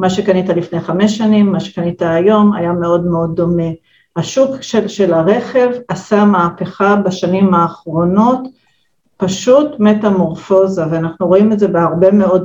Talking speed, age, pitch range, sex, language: 135 wpm, 50-69, 180-225 Hz, female, Hebrew